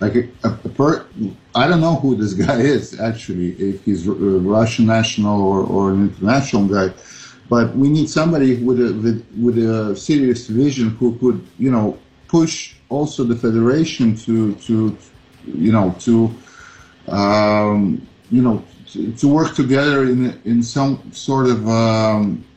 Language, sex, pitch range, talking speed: English, male, 105-125 Hz, 160 wpm